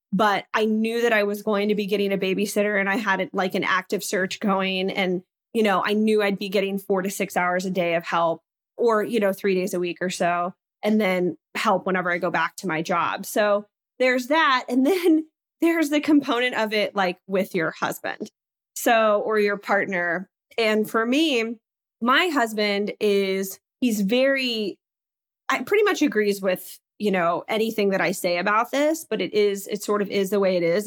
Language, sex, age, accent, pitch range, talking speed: English, female, 20-39, American, 190-225 Hz, 205 wpm